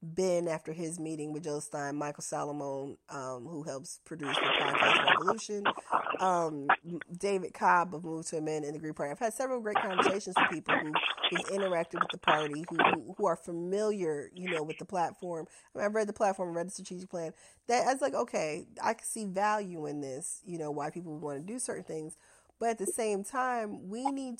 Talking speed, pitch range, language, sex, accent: 205 wpm, 160-200 Hz, English, female, American